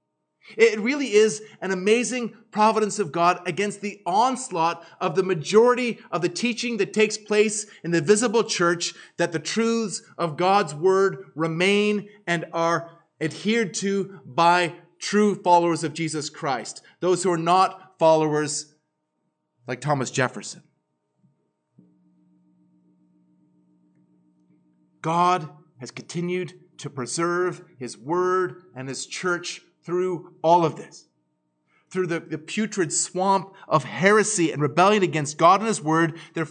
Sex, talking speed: male, 130 wpm